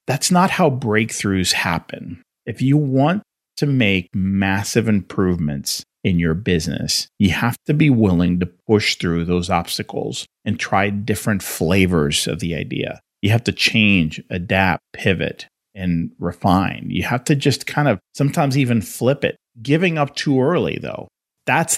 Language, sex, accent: English, male, American